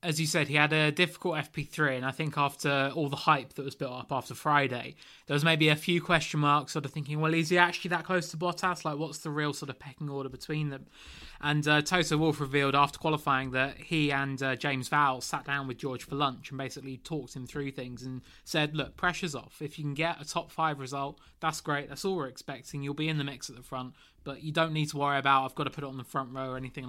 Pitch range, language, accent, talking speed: 135-155 Hz, English, British, 265 wpm